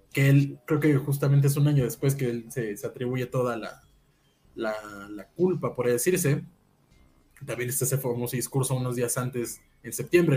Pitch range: 120-155 Hz